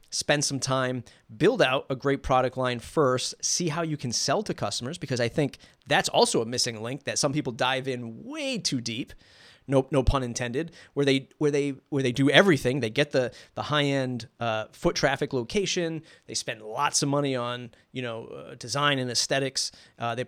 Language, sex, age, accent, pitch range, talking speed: English, male, 30-49, American, 120-145 Hz, 200 wpm